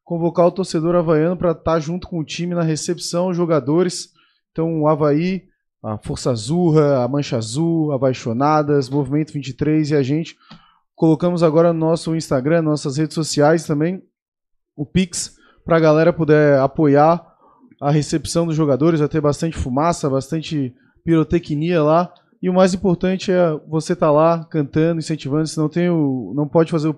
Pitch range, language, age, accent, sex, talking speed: 150-175 Hz, Portuguese, 20-39, Brazilian, male, 165 wpm